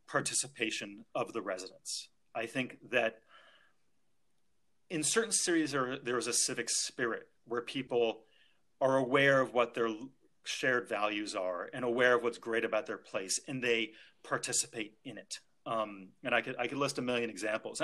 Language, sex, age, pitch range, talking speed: English, male, 30-49, 115-155 Hz, 165 wpm